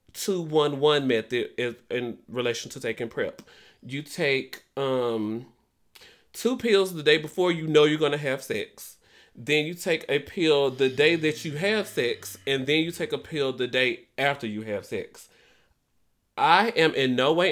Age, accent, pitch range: 30-49, American, 130-180 Hz